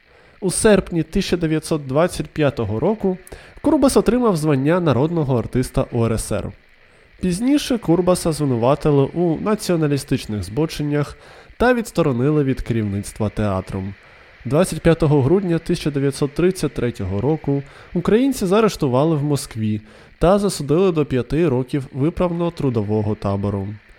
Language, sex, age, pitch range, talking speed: Ukrainian, male, 20-39, 120-175 Hz, 90 wpm